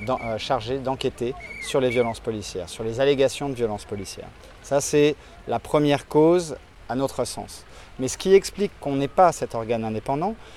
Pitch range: 115-150 Hz